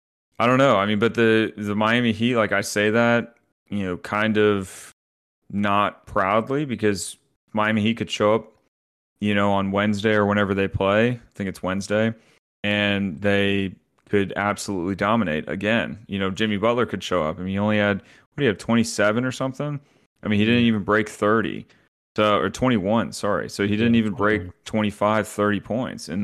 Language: English